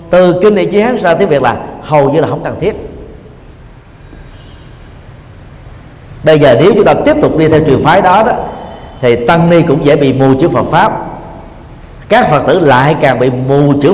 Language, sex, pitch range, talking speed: Vietnamese, male, 120-155 Hz, 195 wpm